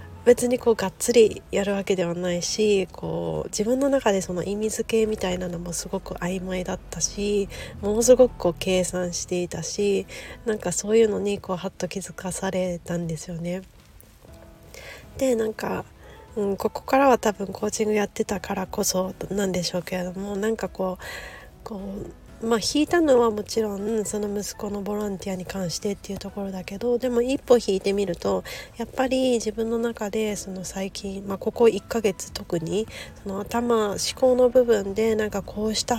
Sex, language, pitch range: female, Japanese, 190-230 Hz